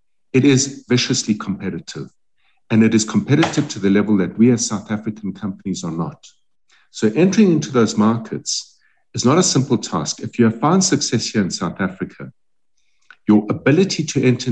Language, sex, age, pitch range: English, male, 50-69, 110-145 Hz